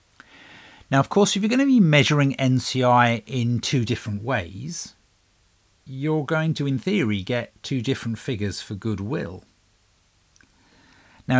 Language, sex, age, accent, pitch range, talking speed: English, male, 50-69, British, 105-130 Hz, 135 wpm